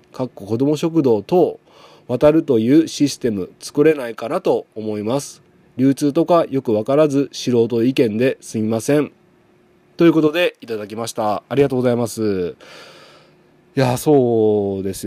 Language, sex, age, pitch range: Japanese, male, 20-39, 105-155 Hz